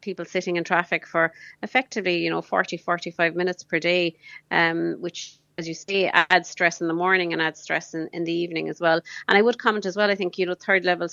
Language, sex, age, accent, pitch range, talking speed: English, female, 30-49, Irish, 165-185 Hz, 235 wpm